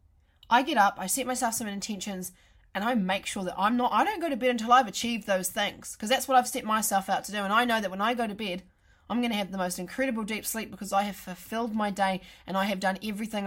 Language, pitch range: English, 185-240 Hz